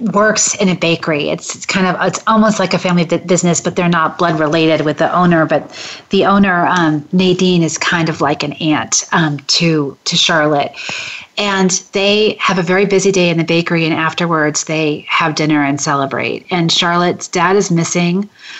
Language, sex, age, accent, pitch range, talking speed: English, female, 30-49, American, 160-190 Hz, 190 wpm